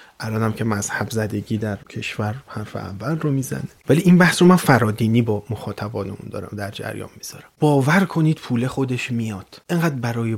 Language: Persian